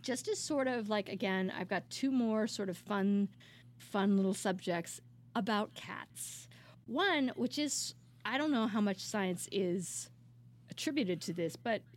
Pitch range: 170-220 Hz